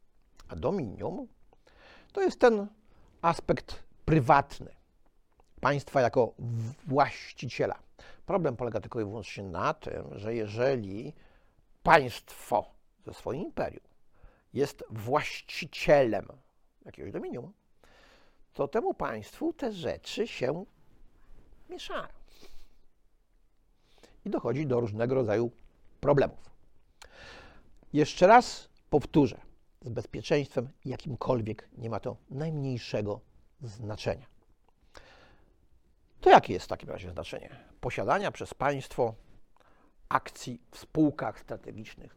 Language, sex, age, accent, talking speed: Polish, male, 60-79, native, 90 wpm